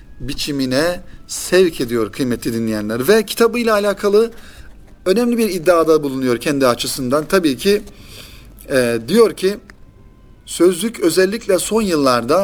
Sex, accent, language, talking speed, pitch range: male, native, Turkish, 110 wpm, 125-185 Hz